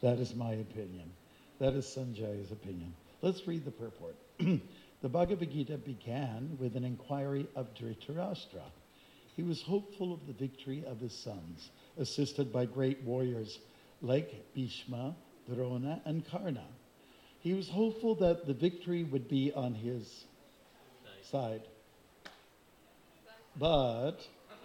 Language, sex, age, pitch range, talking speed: English, male, 60-79, 125-160 Hz, 125 wpm